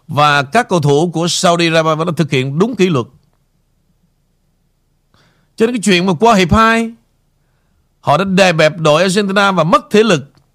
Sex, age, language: male, 50-69, Vietnamese